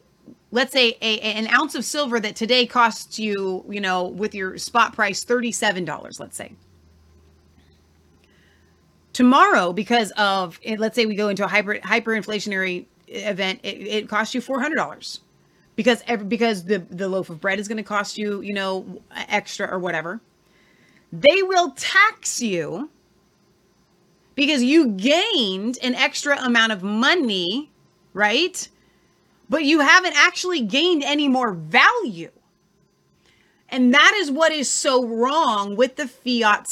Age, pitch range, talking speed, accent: 30-49, 200-280 Hz, 145 wpm, American